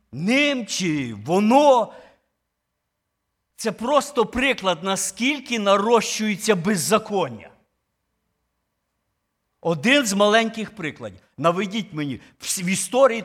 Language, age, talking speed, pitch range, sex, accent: Ukrainian, 50-69, 75 wpm, 165-230 Hz, male, native